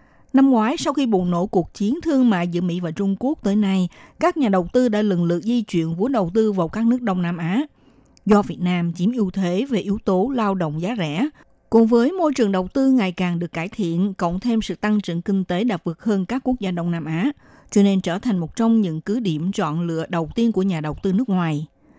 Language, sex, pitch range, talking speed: Vietnamese, female, 175-235 Hz, 255 wpm